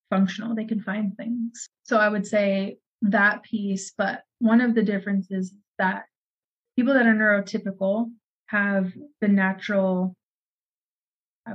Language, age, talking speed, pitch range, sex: English, 30-49, 130 wpm, 190-225 Hz, female